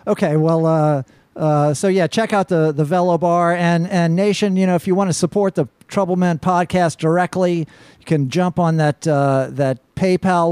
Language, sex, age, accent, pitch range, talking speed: English, male, 50-69, American, 135-170 Hz, 195 wpm